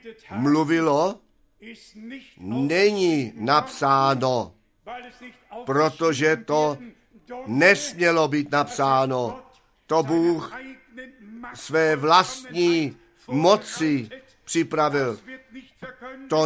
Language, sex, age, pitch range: Czech, male, 50-69, 150-230 Hz